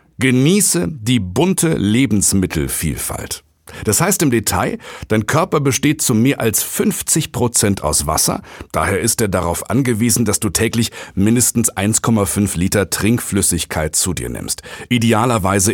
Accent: German